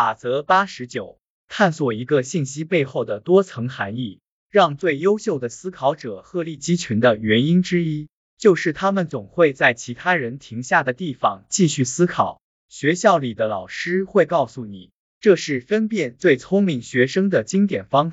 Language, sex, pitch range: Chinese, male, 125-180 Hz